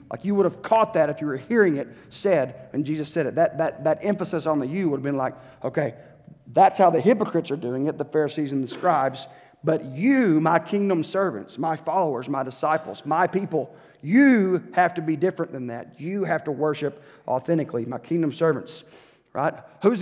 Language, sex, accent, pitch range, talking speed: English, male, American, 150-185 Hz, 200 wpm